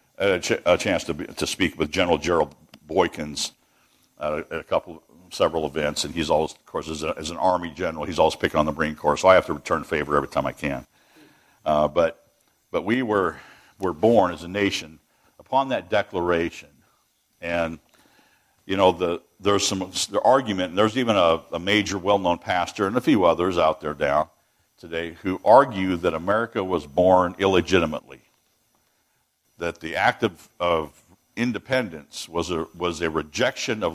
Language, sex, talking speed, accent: English, male, 175 wpm, American